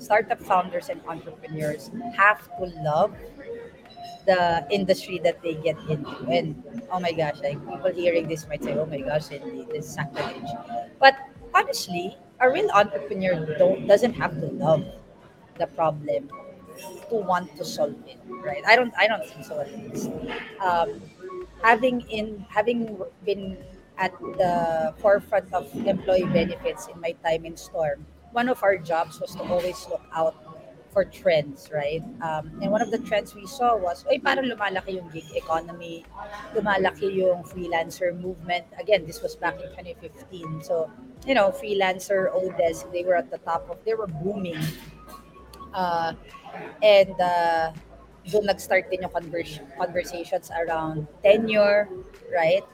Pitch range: 165-220 Hz